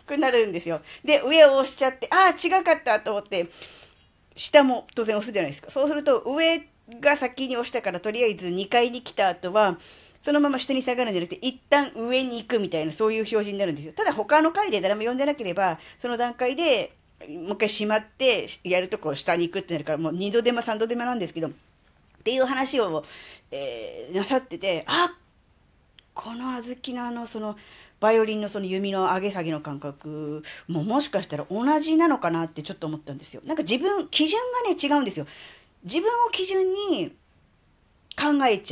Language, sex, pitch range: Japanese, female, 180-290 Hz